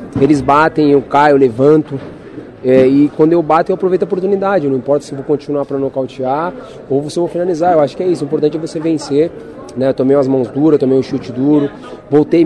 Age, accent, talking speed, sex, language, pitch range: 20-39, Brazilian, 235 wpm, male, Portuguese, 130-155 Hz